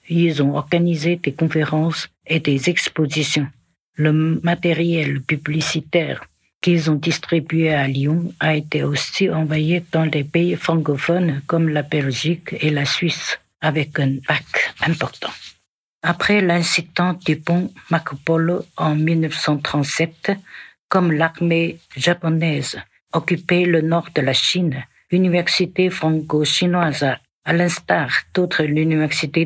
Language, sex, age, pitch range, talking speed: French, female, 60-79, 150-170 Hz, 115 wpm